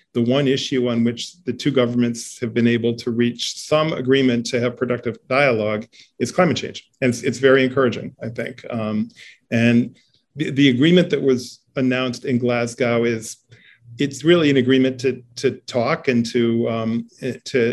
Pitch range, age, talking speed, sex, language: 120-135 Hz, 40-59, 170 wpm, male, English